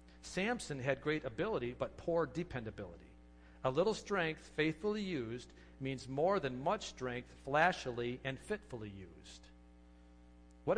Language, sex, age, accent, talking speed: English, male, 50-69, American, 120 wpm